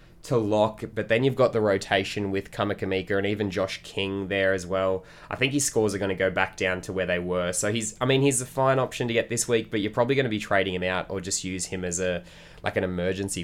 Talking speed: 275 wpm